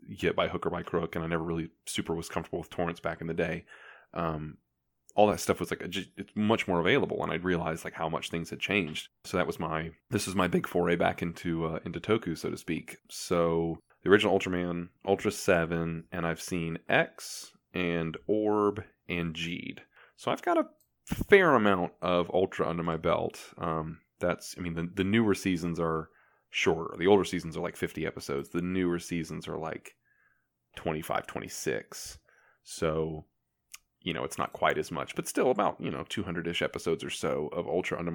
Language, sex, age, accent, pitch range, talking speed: English, male, 20-39, American, 80-95 Hz, 195 wpm